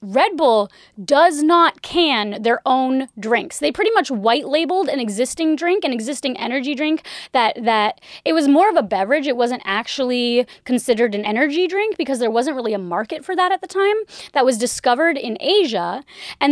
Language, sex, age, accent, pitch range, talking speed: English, female, 20-39, American, 240-335 Hz, 185 wpm